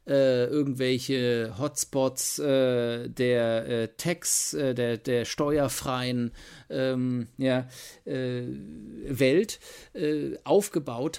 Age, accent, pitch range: 40-59, German, 115-140 Hz